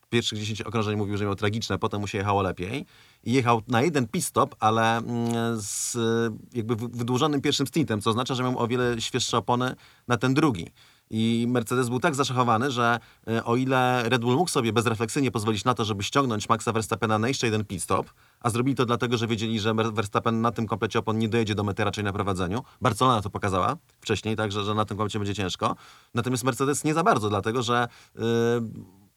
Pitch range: 110-125 Hz